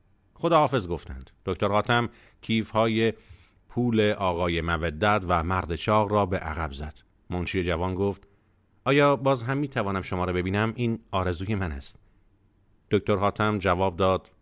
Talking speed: 140 wpm